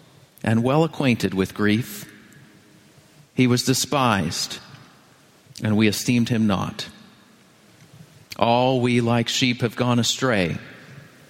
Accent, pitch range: American, 115-140 Hz